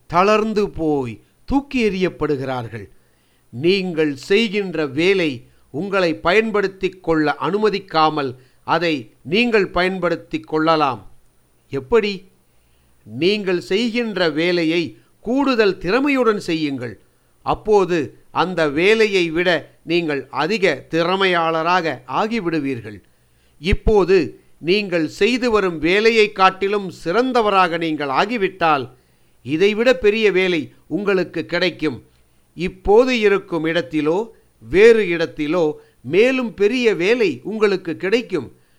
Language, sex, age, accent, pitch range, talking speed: Tamil, male, 50-69, native, 155-205 Hz, 80 wpm